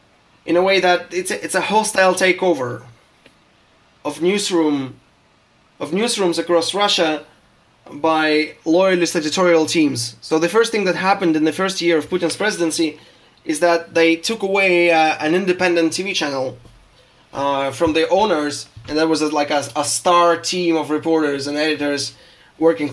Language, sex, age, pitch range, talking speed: English, male, 20-39, 150-180 Hz, 145 wpm